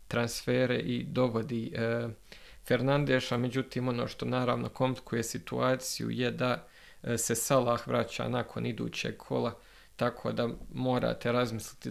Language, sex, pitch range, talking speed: Croatian, male, 115-125 Hz, 110 wpm